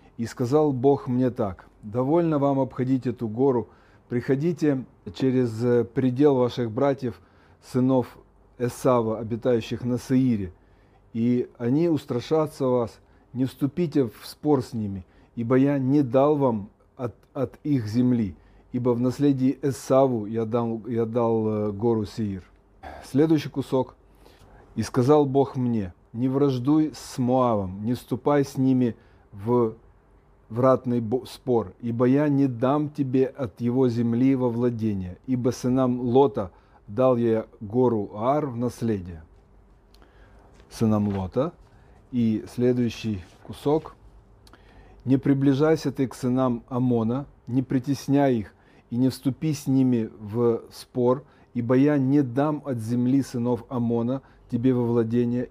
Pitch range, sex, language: 110-135 Hz, male, Russian